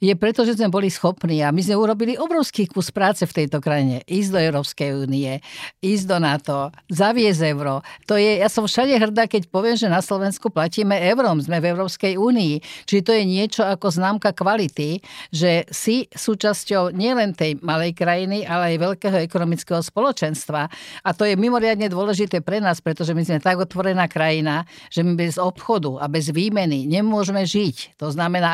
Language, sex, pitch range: Slovak, female, 165-205 Hz